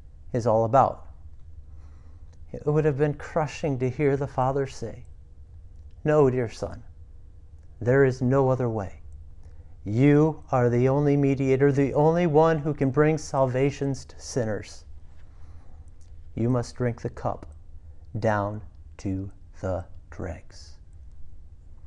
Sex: male